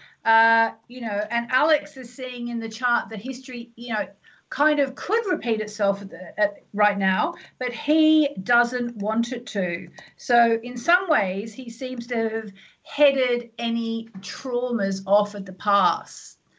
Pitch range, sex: 210-275 Hz, female